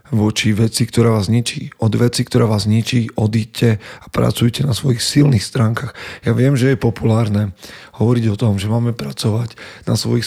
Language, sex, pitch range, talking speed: Slovak, male, 110-120 Hz, 175 wpm